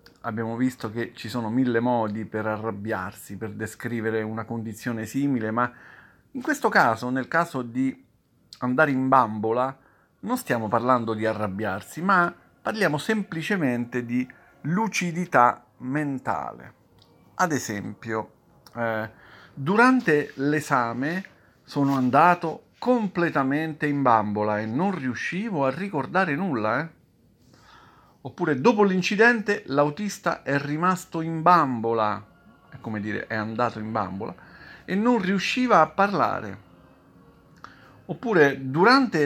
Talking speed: 115 wpm